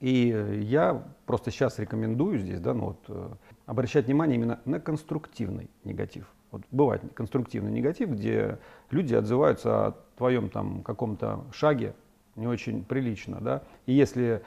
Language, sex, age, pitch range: Russian, male, 40-59, 110-130 Hz